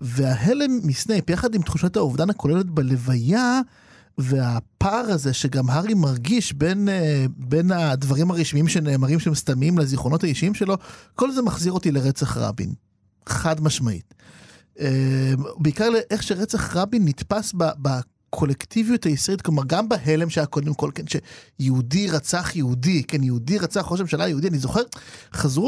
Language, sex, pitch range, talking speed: Hebrew, male, 140-210 Hz, 135 wpm